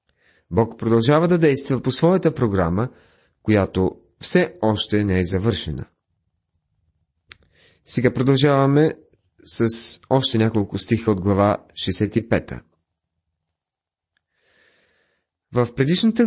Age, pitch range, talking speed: 30-49, 100-140 Hz, 90 wpm